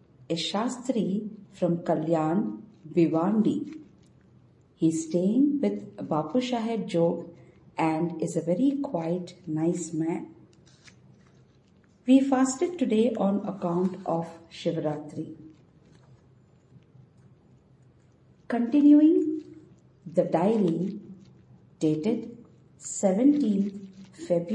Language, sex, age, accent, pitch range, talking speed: English, female, 50-69, Indian, 160-235 Hz, 80 wpm